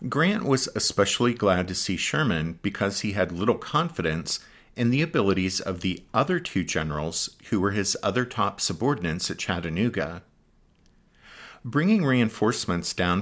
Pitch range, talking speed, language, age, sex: 85-115 Hz, 140 wpm, English, 50-69, male